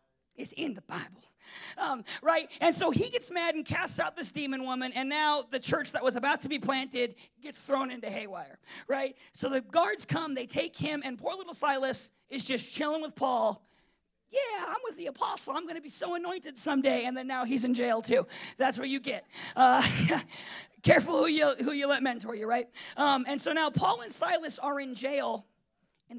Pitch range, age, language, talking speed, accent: 240-295 Hz, 40-59, English, 210 wpm, American